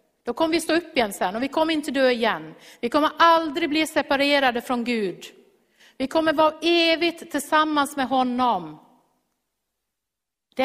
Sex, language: female, Swedish